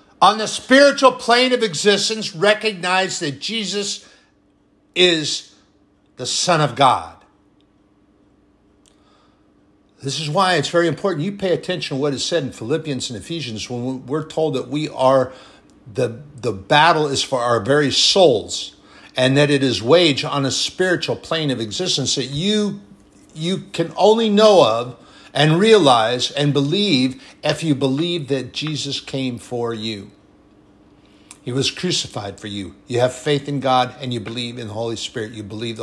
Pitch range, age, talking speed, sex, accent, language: 120-165 Hz, 60-79, 160 wpm, male, American, English